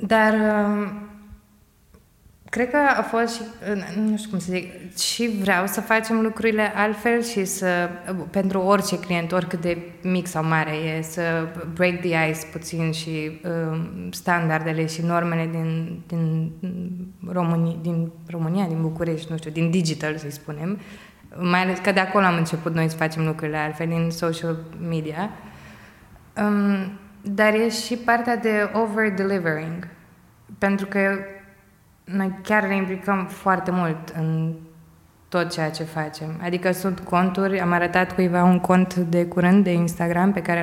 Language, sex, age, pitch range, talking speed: Romanian, female, 20-39, 170-200 Hz, 140 wpm